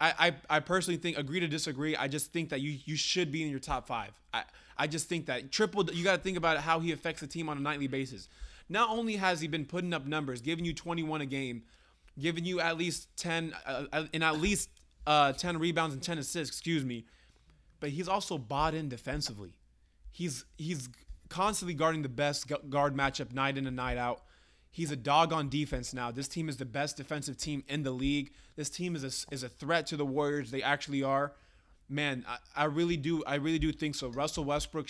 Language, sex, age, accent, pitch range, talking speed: English, male, 20-39, American, 135-160 Hz, 220 wpm